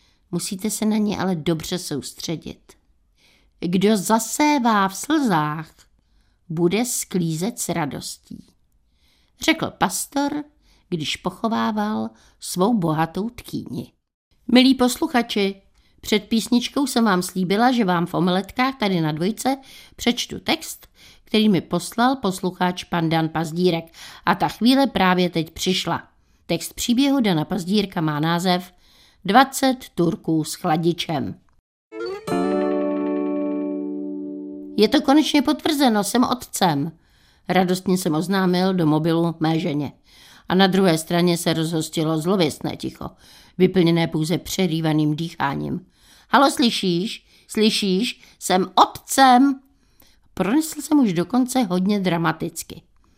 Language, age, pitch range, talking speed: Czech, 60-79, 165-230 Hz, 110 wpm